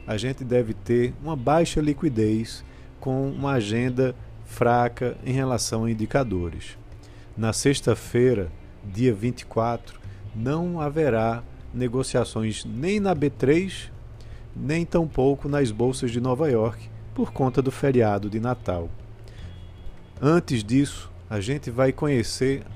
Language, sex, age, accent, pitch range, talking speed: Portuguese, male, 50-69, Brazilian, 105-130 Hz, 115 wpm